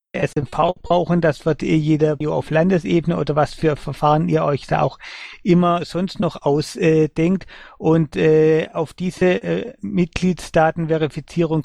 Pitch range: 145-170 Hz